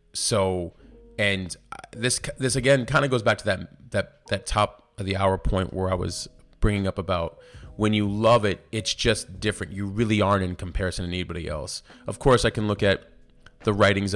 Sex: male